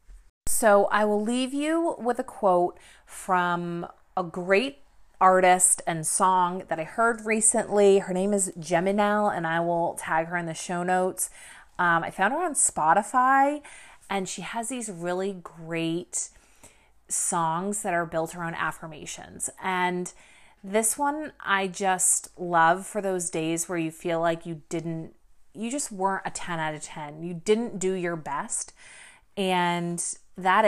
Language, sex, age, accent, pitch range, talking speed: English, female, 30-49, American, 170-215 Hz, 155 wpm